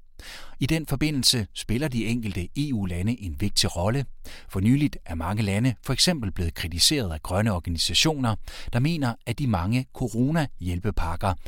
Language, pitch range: Danish, 90-130 Hz